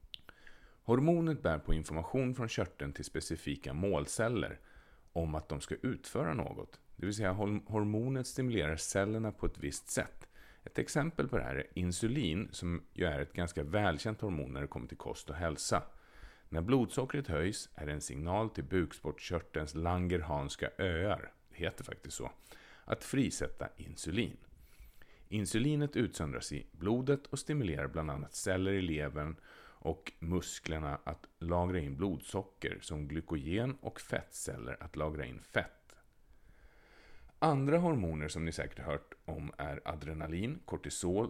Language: Swedish